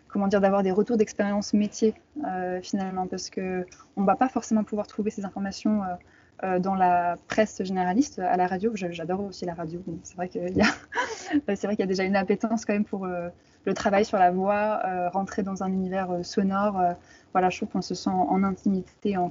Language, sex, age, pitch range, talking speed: French, female, 20-39, 185-220 Hz, 215 wpm